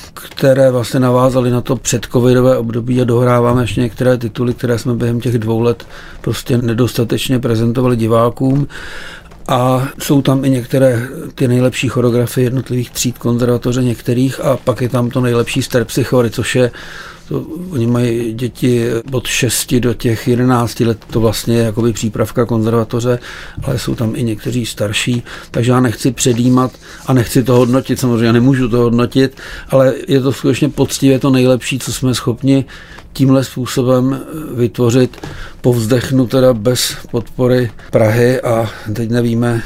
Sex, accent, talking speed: male, native, 150 wpm